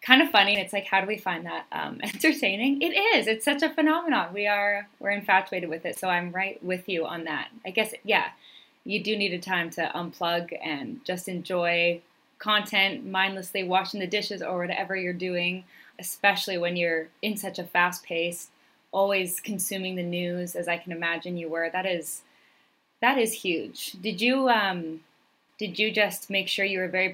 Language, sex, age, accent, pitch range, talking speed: English, female, 20-39, American, 175-210 Hz, 190 wpm